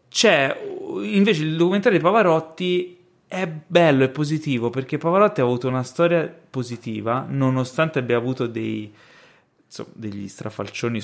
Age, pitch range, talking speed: 20-39, 110-140 Hz, 130 wpm